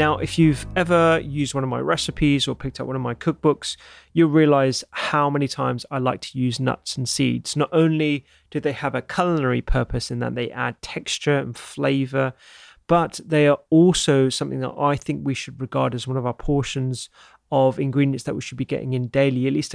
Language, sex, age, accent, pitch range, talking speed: English, male, 30-49, British, 130-145 Hz, 215 wpm